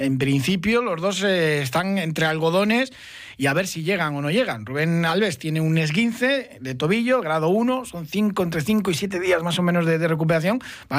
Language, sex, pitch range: Spanish, male, 135-190 Hz